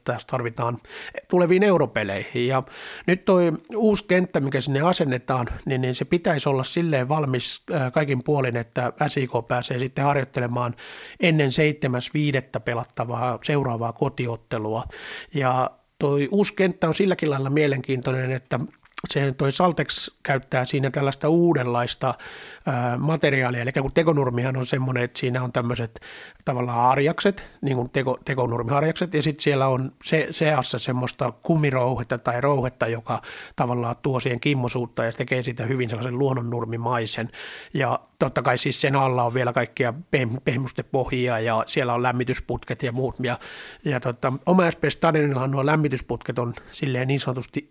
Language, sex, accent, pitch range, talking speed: Finnish, male, native, 125-150 Hz, 140 wpm